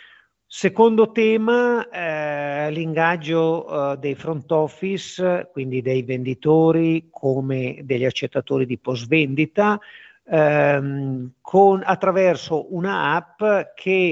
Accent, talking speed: native, 100 wpm